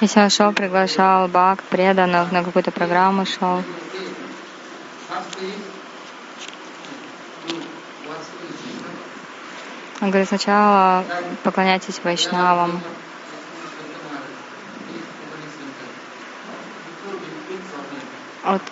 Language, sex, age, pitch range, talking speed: Russian, female, 20-39, 180-205 Hz, 50 wpm